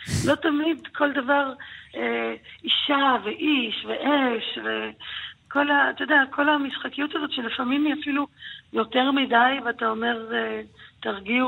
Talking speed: 115 wpm